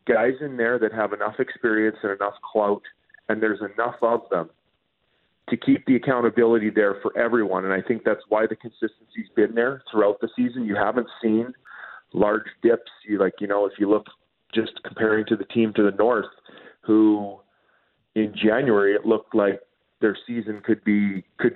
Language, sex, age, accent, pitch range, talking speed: English, male, 40-59, American, 100-120 Hz, 185 wpm